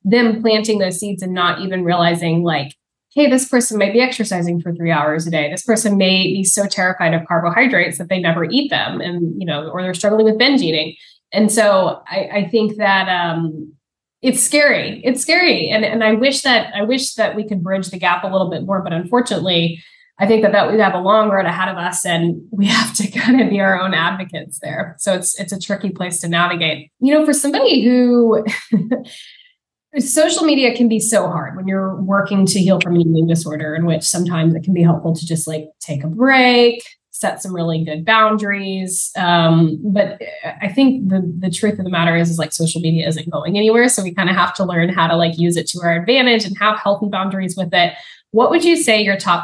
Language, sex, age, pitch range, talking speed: English, female, 10-29, 165-215 Hz, 225 wpm